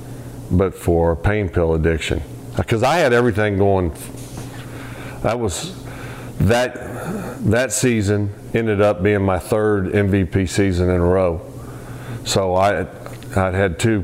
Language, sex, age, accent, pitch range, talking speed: English, male, 40-59, American, 90-125 Hz, 130 wpm